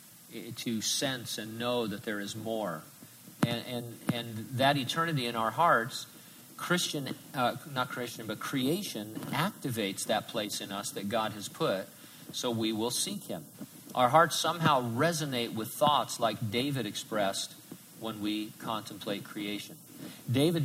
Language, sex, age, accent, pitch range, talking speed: English, male, 50-69, American, 115-150 Hz, 145 wpm